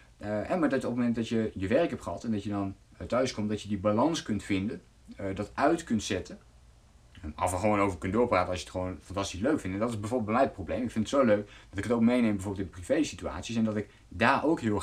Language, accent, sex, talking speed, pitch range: Dutch, Dutch, male, 285 wpm, 100-125 Hz